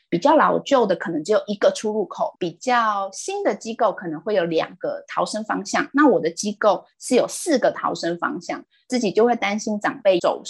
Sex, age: female, 20-39